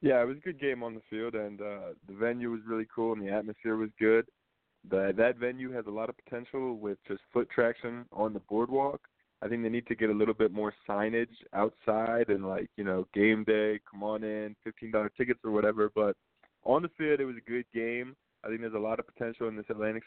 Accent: American